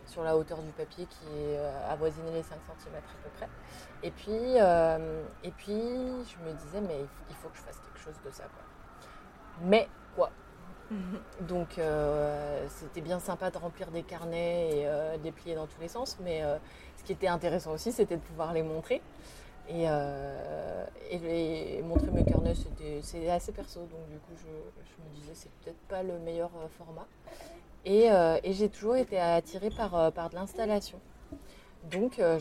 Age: 20-39